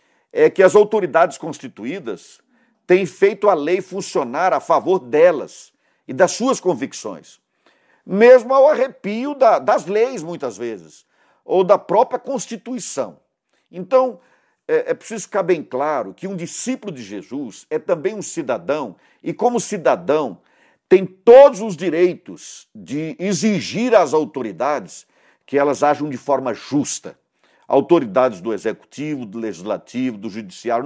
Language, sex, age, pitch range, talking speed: Portuguese, male, 50-69, 165-250 Hz, 130 wpm